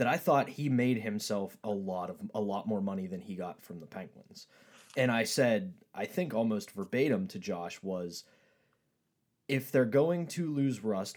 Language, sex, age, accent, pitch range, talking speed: English, male, 20-39, American, 105-140 Hz, 190 wpm